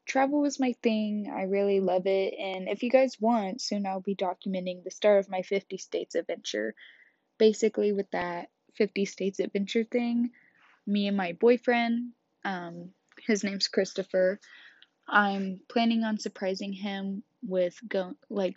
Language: English